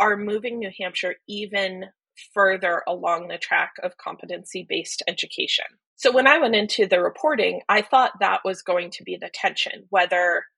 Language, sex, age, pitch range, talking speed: English, female, 20-39, 185-245 Hz, 170 wpm